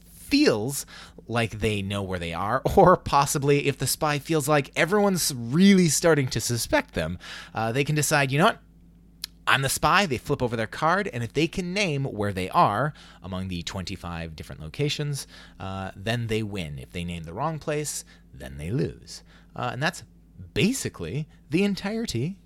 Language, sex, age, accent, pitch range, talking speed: English, male, 30-49, American, 90-145 Hz, 180 wpm